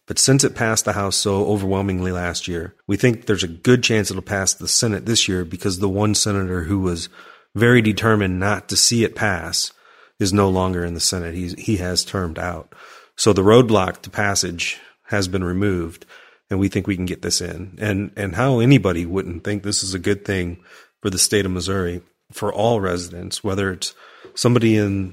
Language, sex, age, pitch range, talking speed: English, male, 30-49, 95-110 Hz, 205 wpm